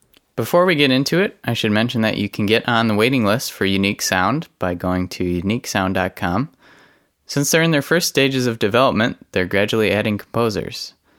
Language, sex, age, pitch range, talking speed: English, male, 20-39, 100-130 Hz, 190 wpm